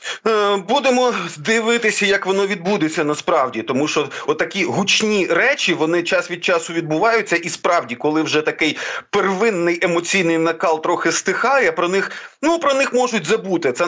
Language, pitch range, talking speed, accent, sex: Ukrainian, 160-195 Hz, 145 wpm, native, male